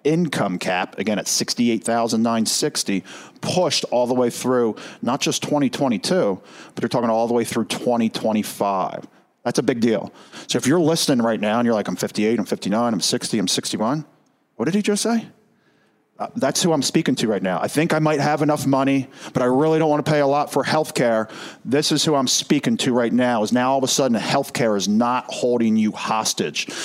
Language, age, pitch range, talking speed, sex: English, 40-59, 115-155 Hz, 205 wpm, male